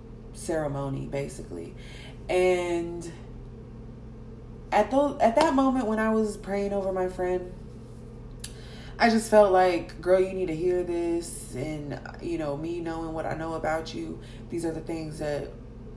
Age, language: 20-39, English